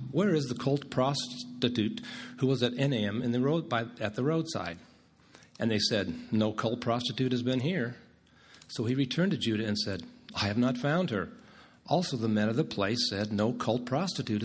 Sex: male